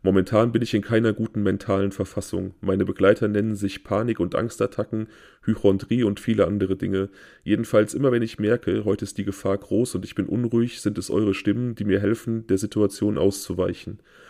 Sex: male